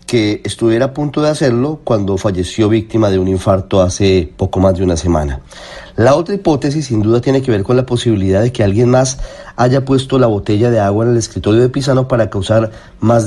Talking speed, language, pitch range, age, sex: 215 wpm, Spanish, 105-135 Hz, 30-49, male